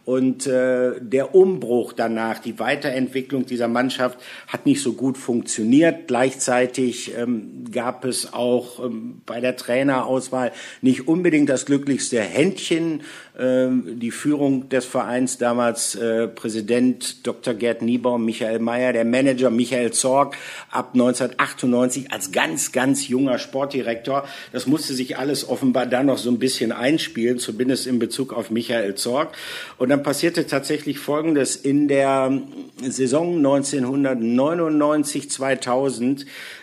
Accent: German